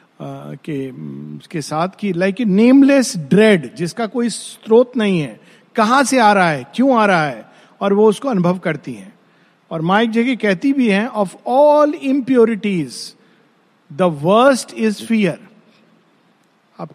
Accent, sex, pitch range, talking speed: native, male, 180-235 Hz, 150 wpm